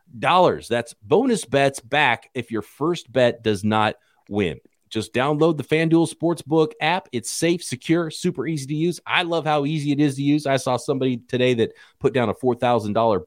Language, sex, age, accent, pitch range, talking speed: English, male, 30-49, American, 100-155 Hz, 190 wpm